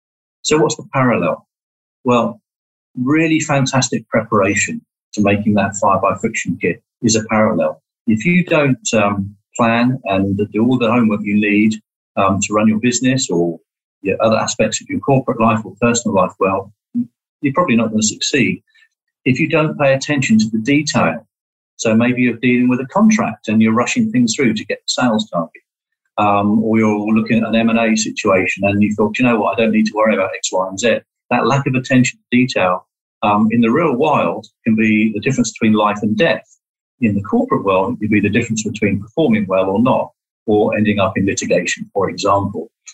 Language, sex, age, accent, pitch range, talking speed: English, male, 40-59, British, 105-135 Hz, 195 wpm